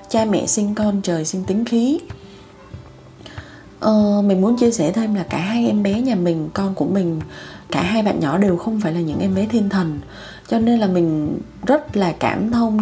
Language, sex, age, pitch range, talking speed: Vietnamese, female, 20-39, 185-235 Hz, 205 wpm